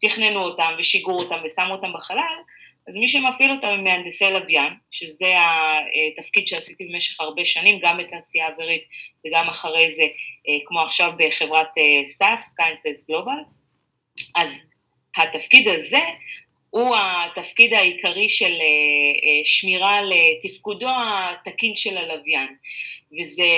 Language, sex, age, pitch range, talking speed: Hebrew, female, 30-49, 160-205 Hz, 115 wpm